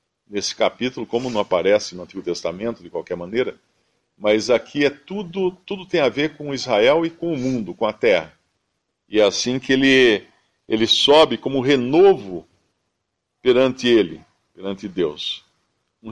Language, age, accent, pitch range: Portuguese, 50-69, Brazilian, 105-145 Hz